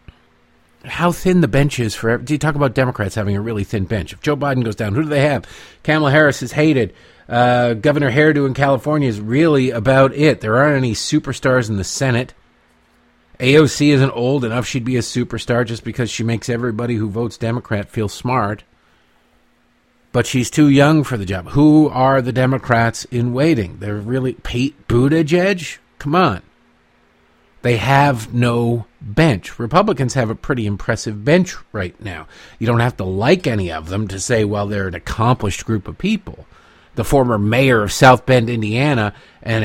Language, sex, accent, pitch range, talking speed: English, male, American, 105-135 Hz, 180 wpm